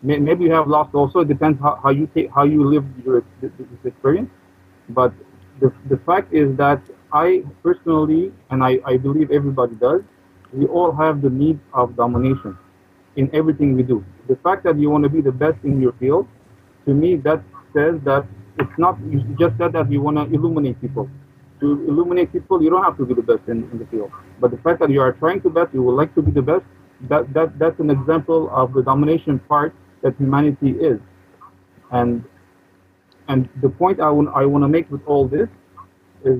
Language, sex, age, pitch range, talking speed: English, male, 40-59, 125-155 Hz, 200 wpm